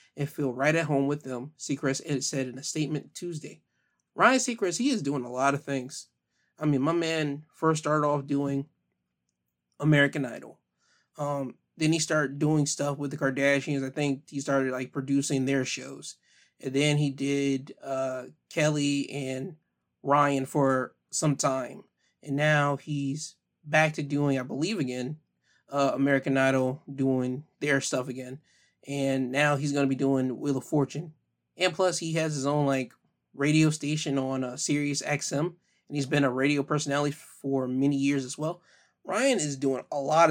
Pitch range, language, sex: 135-155 Hz, English, male